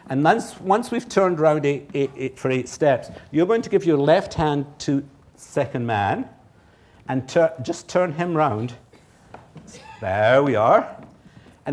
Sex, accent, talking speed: male, British, 165 wpm